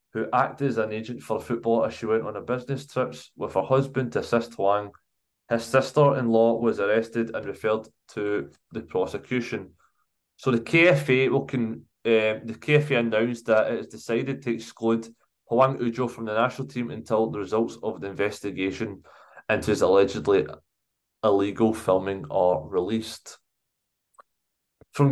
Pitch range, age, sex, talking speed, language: 110-130 Hz, 20-39, male, 160 wpm, English